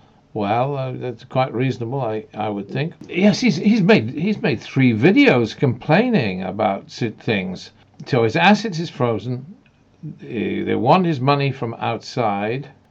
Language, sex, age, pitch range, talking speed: English, male, 50-69, 120-165 Hz, 140 wpm